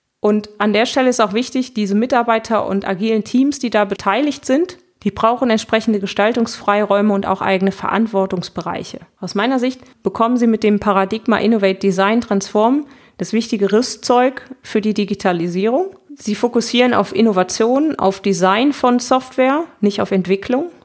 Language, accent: German, German